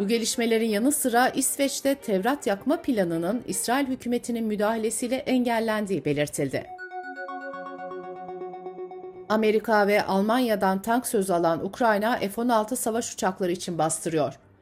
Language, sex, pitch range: Turkish, female, 180-245 Hz